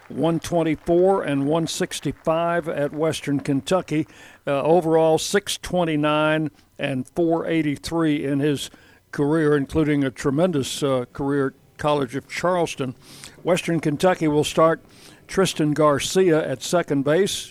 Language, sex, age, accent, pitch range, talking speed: English, male, 60-79, American, 140-170 Hz, 110 wpm